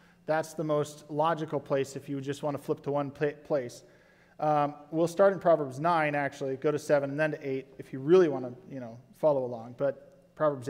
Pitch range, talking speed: 150-180 Hz, 220 wpm